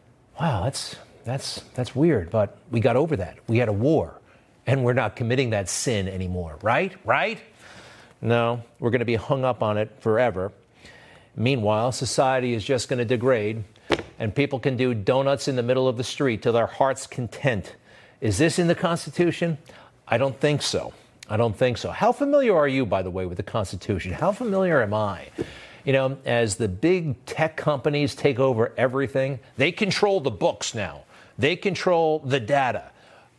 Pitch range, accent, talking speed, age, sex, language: 115-155 Hz, American, 180 wpm, 50-69, male, English